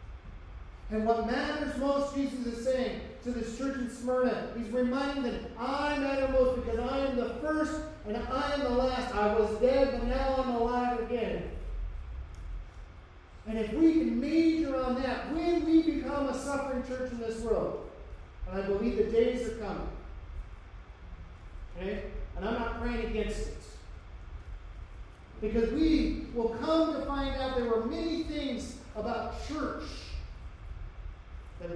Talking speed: 150 wpm